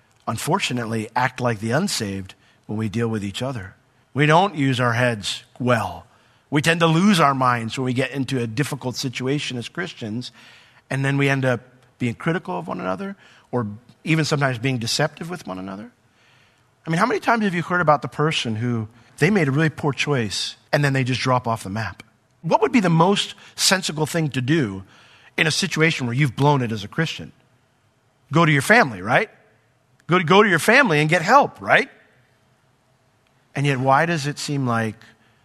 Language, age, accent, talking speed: English, 50-69, American, 195 wpm